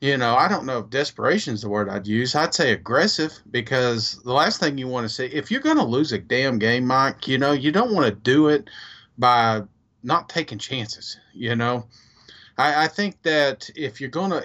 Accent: American